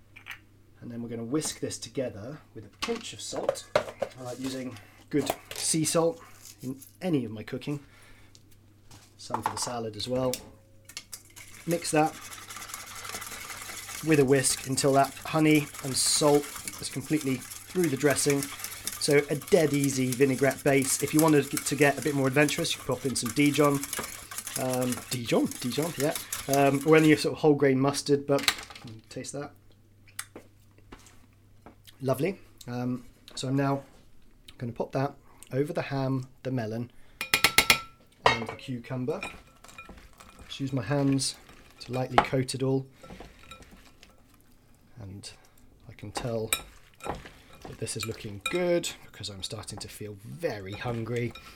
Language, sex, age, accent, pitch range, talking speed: English, male, 30-49, British, 110-140 Hz, 140 wpm